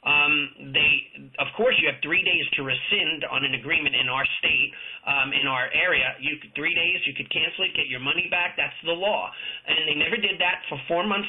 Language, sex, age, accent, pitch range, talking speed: English, male, 30-49, American, 145-175 Hz, 230 wpm